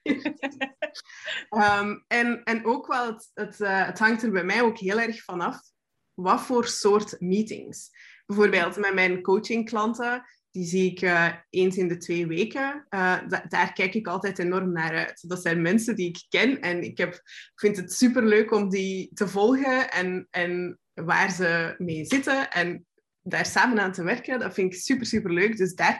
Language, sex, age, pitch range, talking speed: Dutch, female, 20-39, 180-225 Hz, 180 wpm